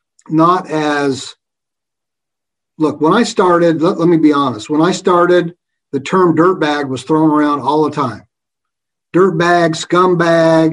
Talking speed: 140 wpm